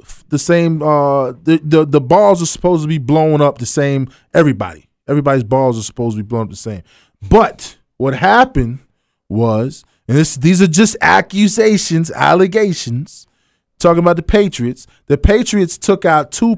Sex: male